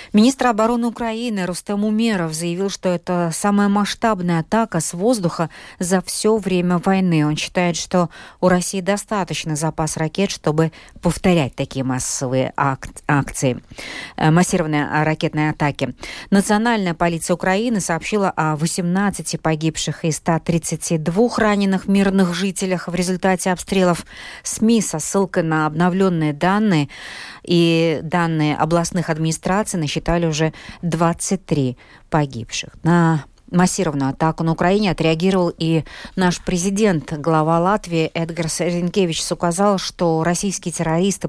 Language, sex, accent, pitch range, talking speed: Russian, female, native, 160-195 Hz, 115 wpm